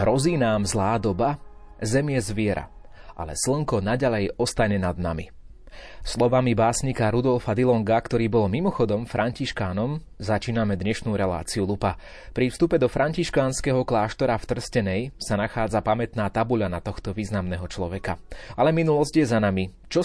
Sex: male